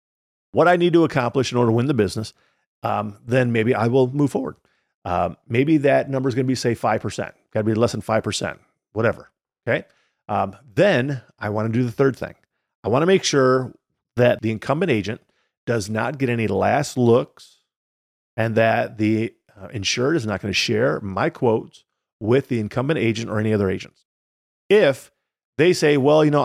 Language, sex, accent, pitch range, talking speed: English, male, American, 110-135 Hz, 195 wpm